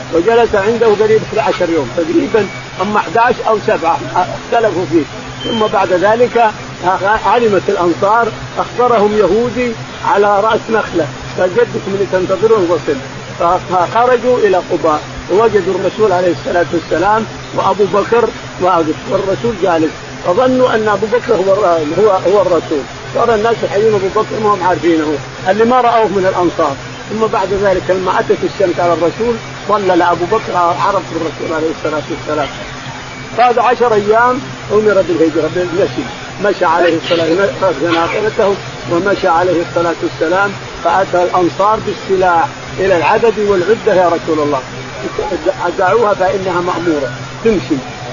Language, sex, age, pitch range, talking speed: Arabic, male, 50-69, 170-220 Hz, 130 wpm